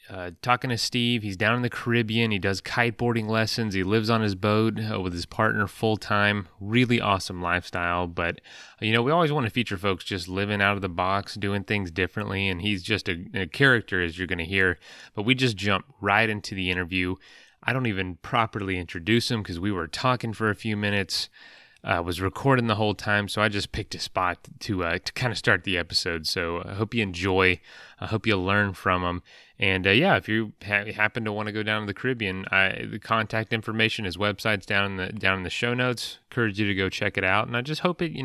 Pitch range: 95-110 Hz